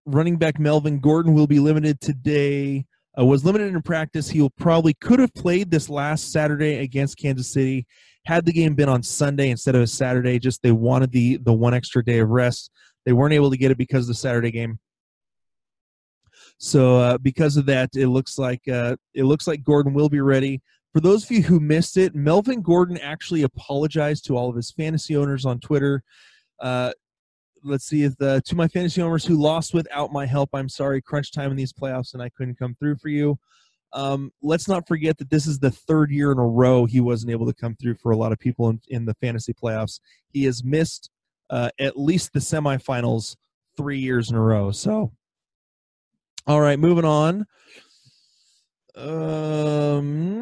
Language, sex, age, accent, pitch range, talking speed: English, male, 20-39, American, 125-155 Hz, 200 wpm